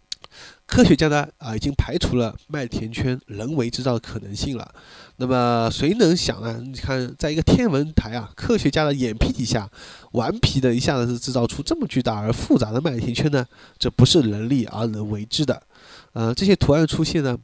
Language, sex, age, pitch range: Chinese, male, 20-39, 115-145 Hz